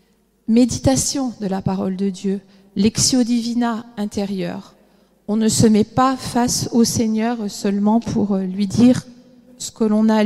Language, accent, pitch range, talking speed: French, French, 210-250 Hz, 150 wpm